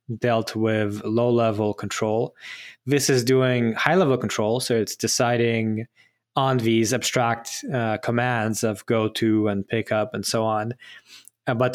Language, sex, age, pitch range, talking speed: English, male, 20-39, 110-130 Hz, 140 wpm